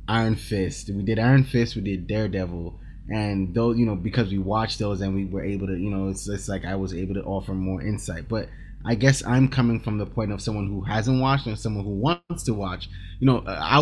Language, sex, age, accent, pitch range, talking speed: English, male, 20-39, American, 100-130 Hz, 245 wpm